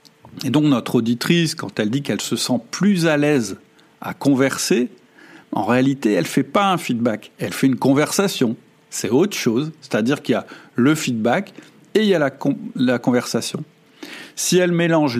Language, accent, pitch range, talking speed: French, French, 120-155 Hz, 185 wpm